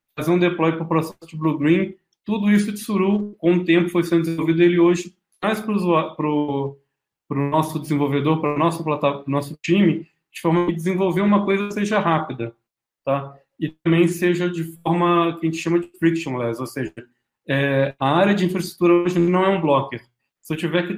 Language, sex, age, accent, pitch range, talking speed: Portuguese, male, 20-39, Brazilian, 140-170 Hz, 205 wpm